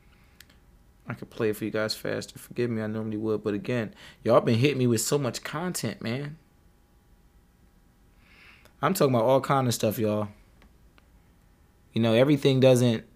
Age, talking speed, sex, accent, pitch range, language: 20-39, 165 wpm, male, American, 105-120 Hz, English